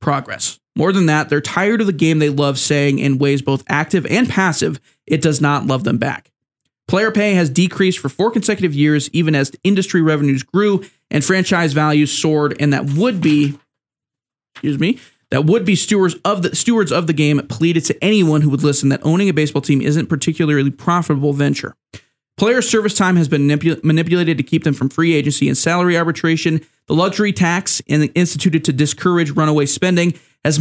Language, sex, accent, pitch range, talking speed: English, male, American, 145-175 Hz, 190 wpm